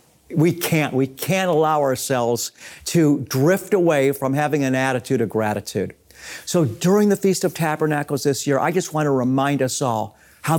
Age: 50-69